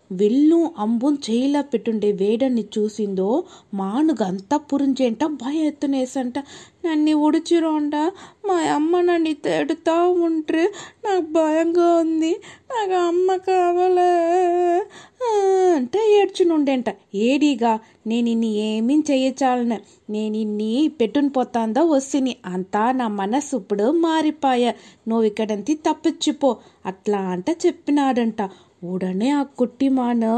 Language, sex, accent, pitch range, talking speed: Telugu, female, native, 230-315 Hz, 95 wpm